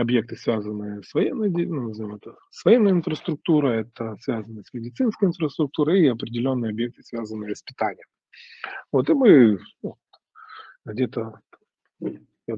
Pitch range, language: 115-140 Hz, Ukrainian